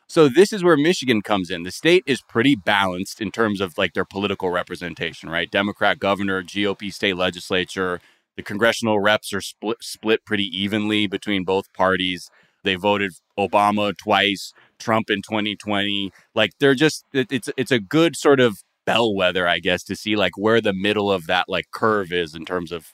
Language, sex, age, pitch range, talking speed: English, male, 20-39, 95-120 Hz, 180 wpm